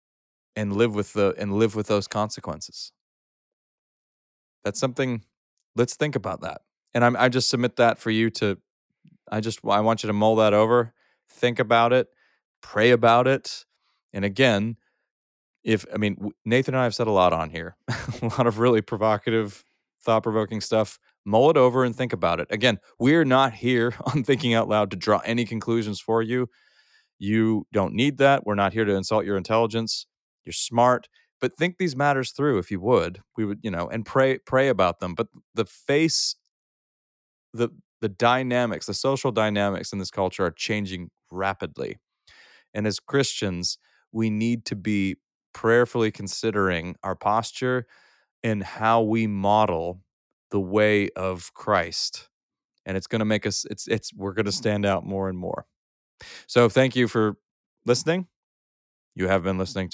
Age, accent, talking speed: 30-49, American, 170 wpm